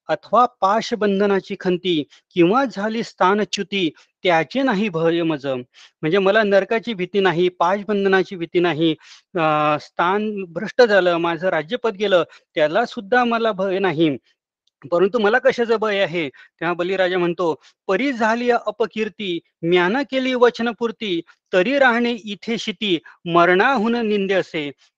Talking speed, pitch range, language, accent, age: 80 wpm, 180-230 Hz, Marathi, native, 30-49